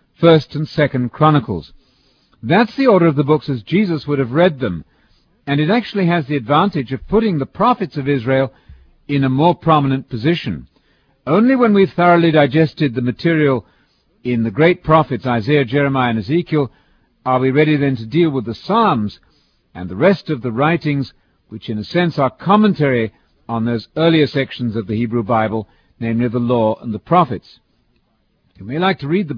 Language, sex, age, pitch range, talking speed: English, male, 50-69, 120-170 Hz, 180 wpm